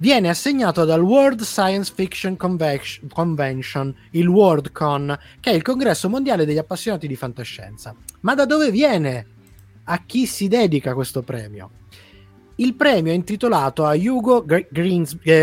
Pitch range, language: 145-230 Hz, Italian